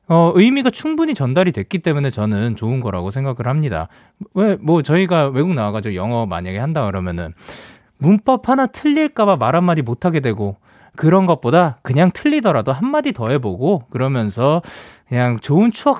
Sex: male